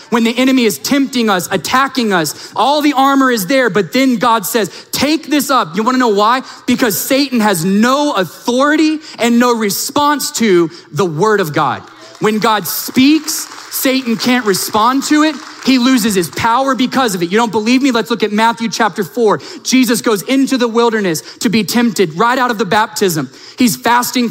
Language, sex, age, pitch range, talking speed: English, male, 20-39, 210-260 Hz, 195 wpm